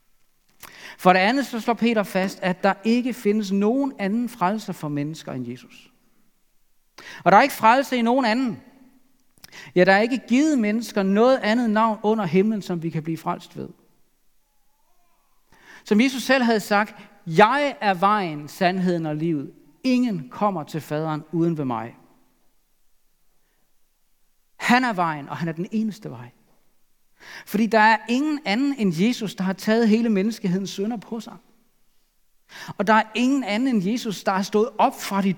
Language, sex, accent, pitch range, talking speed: Danish, male, native, 175-230 Hz, 165 wpm